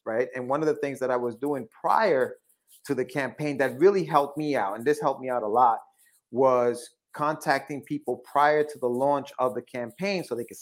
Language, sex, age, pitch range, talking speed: English, male, 30-49, 130-165 Hz, 220 wpm